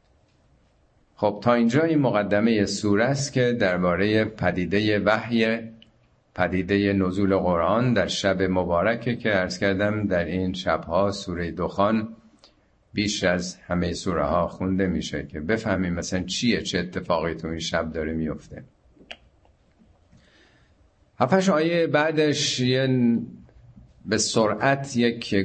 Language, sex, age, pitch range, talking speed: Persian, male, 50-69, 95-130 Hz, 110 wpm